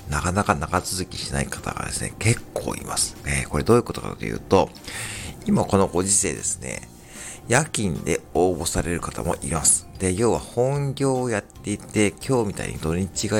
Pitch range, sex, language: 80-105 Hz, male, Japanese